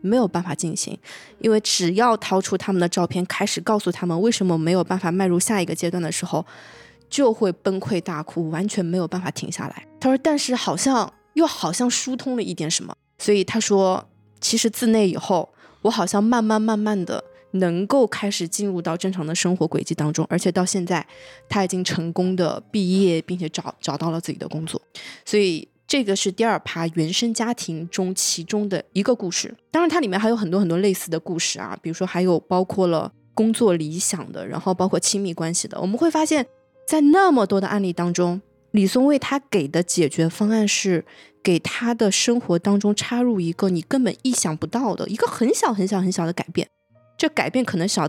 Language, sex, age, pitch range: Chinese, female, 20-39, 170-220 Hz